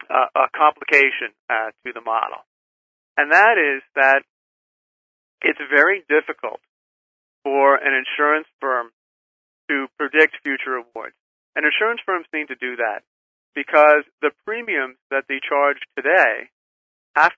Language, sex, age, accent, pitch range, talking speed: English, male, 40-59, American, 135-170 Hz, 130 wpm